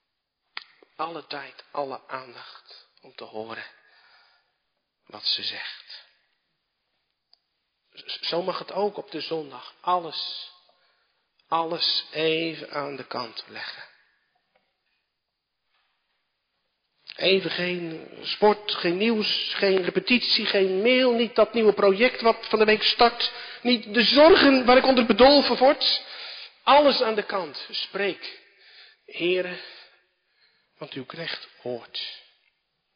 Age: 50-69